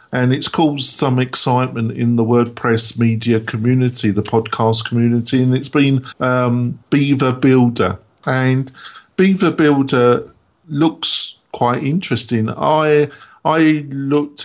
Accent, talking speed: British, 115 wpm